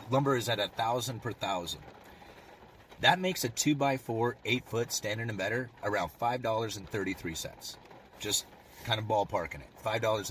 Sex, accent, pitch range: male, American, 100-130 Hz